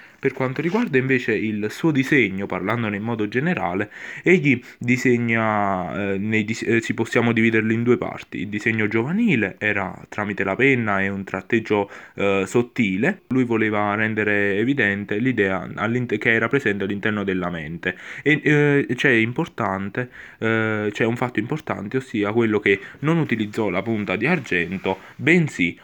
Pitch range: 100-125 Hz